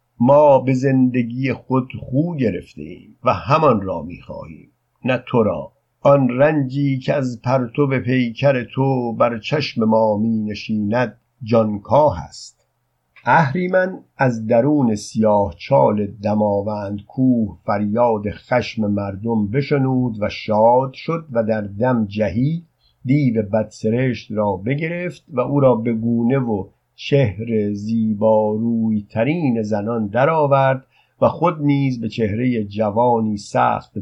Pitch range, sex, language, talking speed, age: 110-130 Hz, male, Persian, 115 wpm, 50-69